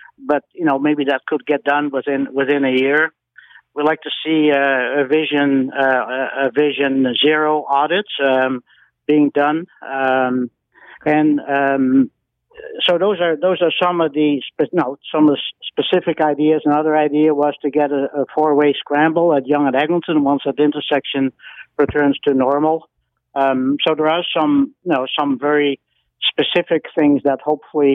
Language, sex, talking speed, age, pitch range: English, male, 165 wpm, 60-79, 135-155 Hz